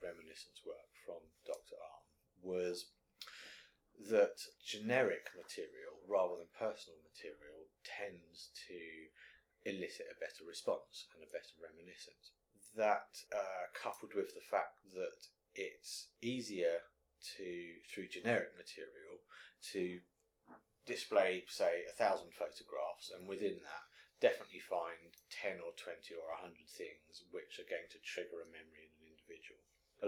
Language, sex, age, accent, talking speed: English, male, 30-49, British, 125 wpm